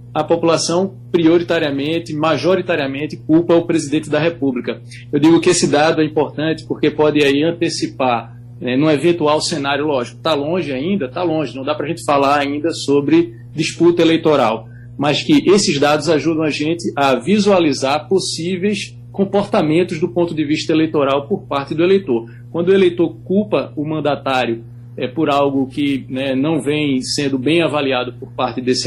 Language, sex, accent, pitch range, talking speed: Portuguese, male, Brazilian, 135-170 Hz, 160 wpm